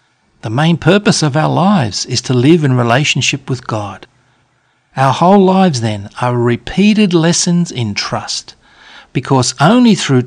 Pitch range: 120-160 Hz